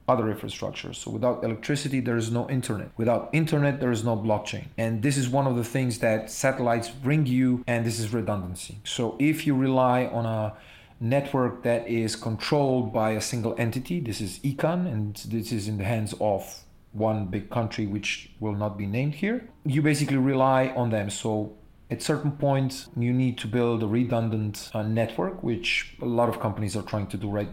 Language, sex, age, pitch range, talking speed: English, male, 40-59, 105-125 Hz, 195 wpm